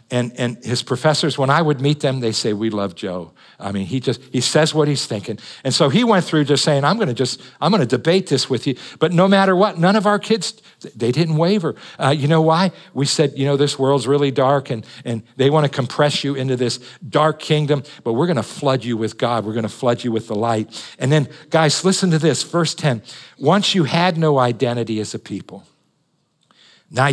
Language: English